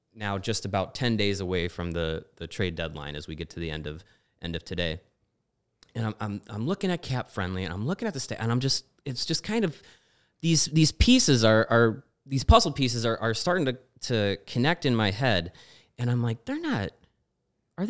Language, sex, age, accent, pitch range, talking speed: English, male, 30-49, American, 110-175 Hz, 220 wpm